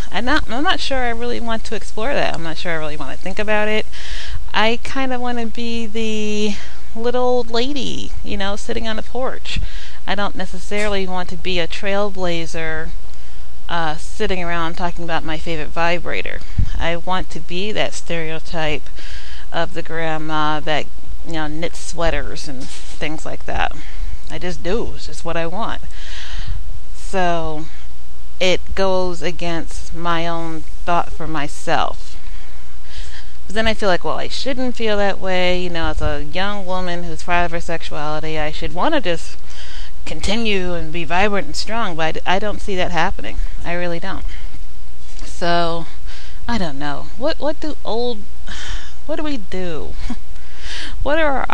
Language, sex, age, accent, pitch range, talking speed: English, female, 30-49, American, 150-200 Hz, 170 wpm